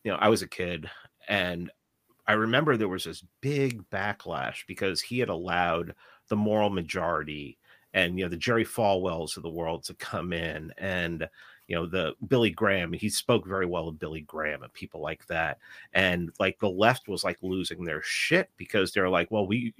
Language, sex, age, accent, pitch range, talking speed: English, male, 40-59, American, 90-115 Hz, 195 wpm